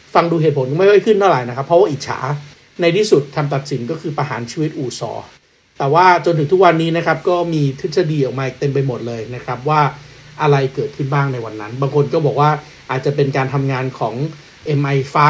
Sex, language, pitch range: male, Thai, 135-175 Hz